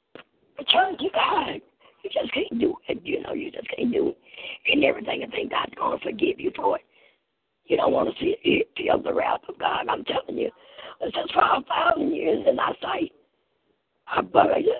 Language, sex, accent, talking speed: English, female, American, 190 wpm